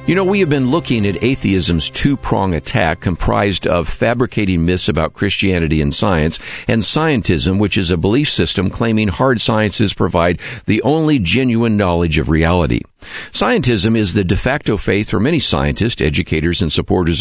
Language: English